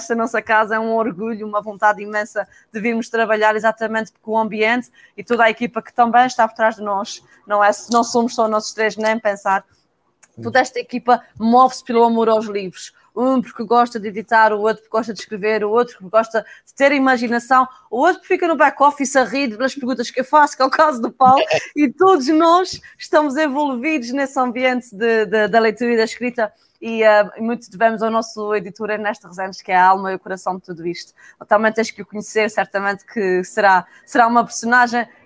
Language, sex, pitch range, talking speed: Portuguese, female, 205-240 Hz, 210 wpm